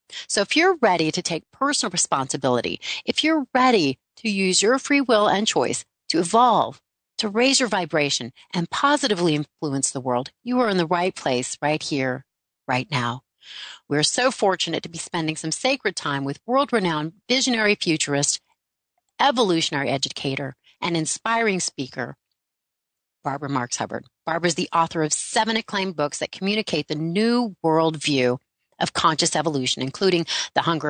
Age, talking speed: 40-59, 155 wpm